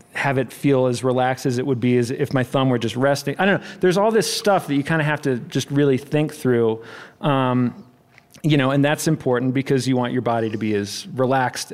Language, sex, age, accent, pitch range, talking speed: English, male, 40-59, American, 120-150 Hz, 245 wpm